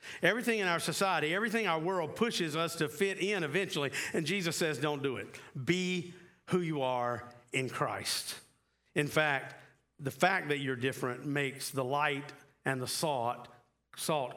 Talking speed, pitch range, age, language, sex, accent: 165 wpm, 140-175 Hz, 50-69, English, male, American